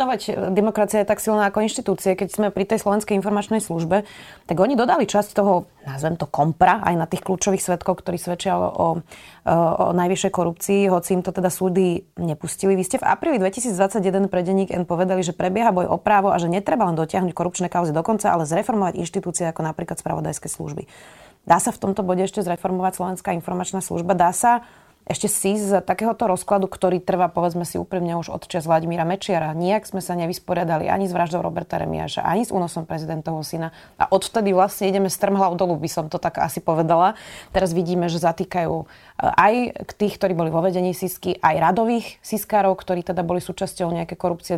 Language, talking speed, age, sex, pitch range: Slovak, 190 wpm, 20-39, female, 170-195 Hz